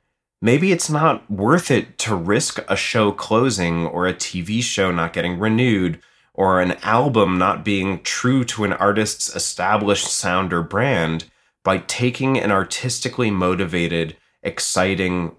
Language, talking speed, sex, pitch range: English, 140 wpm, male, 90-125 Hz